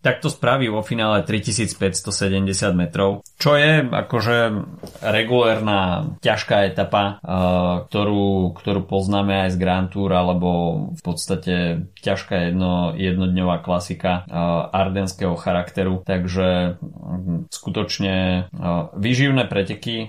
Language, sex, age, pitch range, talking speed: Slovak, male, 20-39, 90-100 Hz, 110 wpm